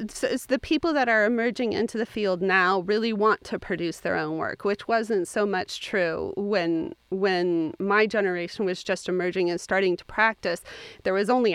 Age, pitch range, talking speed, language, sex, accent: 30-49, 180-225 Hz, 190 wpm, English, female, American